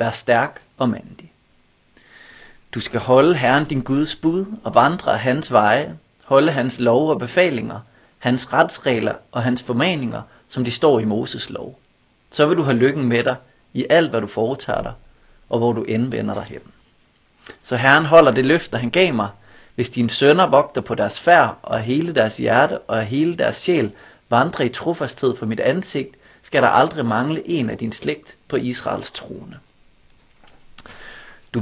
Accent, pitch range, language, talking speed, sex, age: native, 120-145 Hz, Danish, 175 wpm, male, 30-49